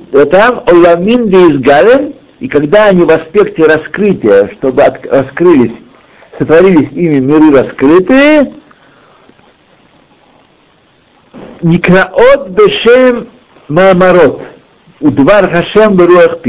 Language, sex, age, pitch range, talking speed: Russian, male, 60-79, 120-185 Hz, 45 wpm